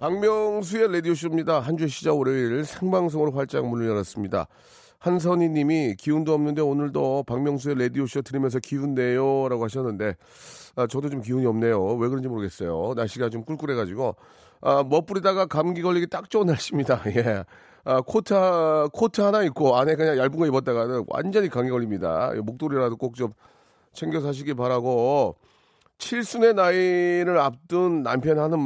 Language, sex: Korean, male